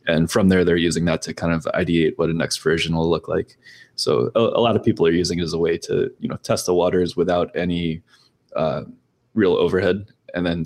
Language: English